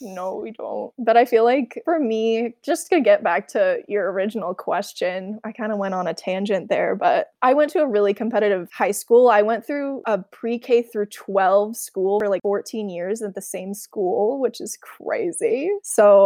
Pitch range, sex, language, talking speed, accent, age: 200-235 Hz, female, English, 200 wpm, American, 20-39